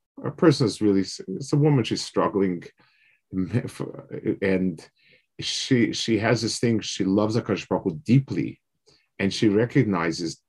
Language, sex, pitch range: English, male, 95-125 Hz